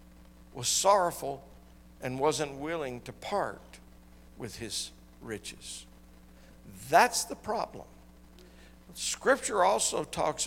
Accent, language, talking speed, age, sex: American, English, 90 wpm, 60-79, male